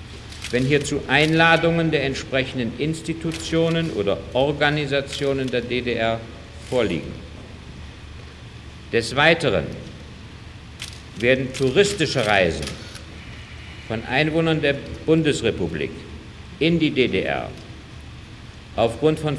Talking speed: 75 wpm